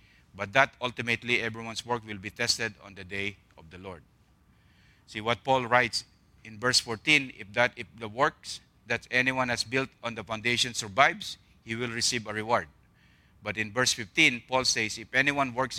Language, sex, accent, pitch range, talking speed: English, male, Filipino, 100-120 Hz, 180 wpm